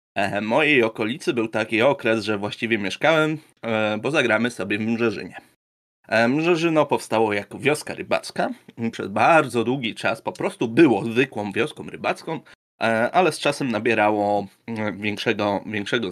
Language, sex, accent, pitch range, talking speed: Polish, male, native, 110-145 Hz, 130 wpm